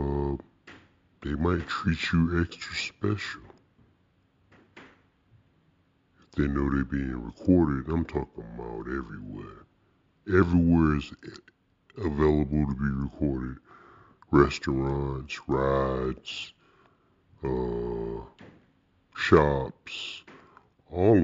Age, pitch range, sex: 60-79, 70-85 Hz, female